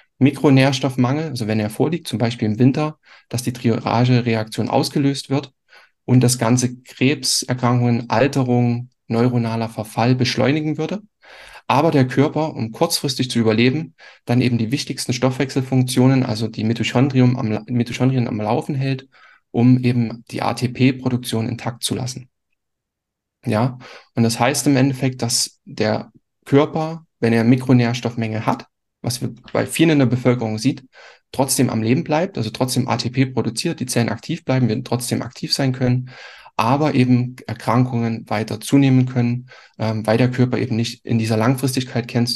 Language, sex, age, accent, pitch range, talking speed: German, male, 10-29, German, 115-135 Hz, 145 wpm